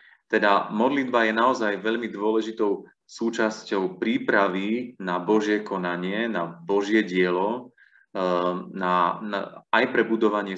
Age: 30-49